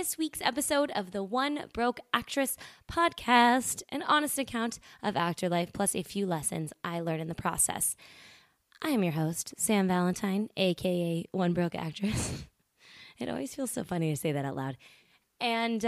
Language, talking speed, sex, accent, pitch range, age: English, 170 wpm, female, American, 170-230 Hz, 20-39